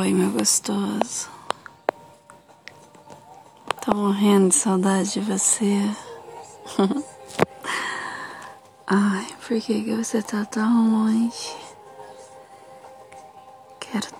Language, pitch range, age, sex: Portuguese, 205-260 Hz, 20-39, female